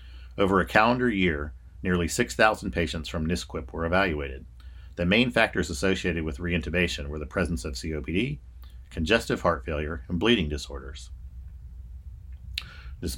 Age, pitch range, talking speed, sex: 50-69, 75-90 Hz, 130 wpm, male